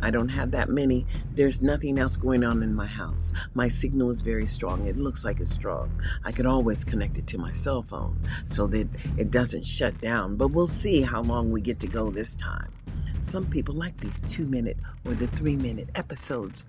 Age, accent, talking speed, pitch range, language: 40-59, American, 215 wpm, 95-160 Hz, English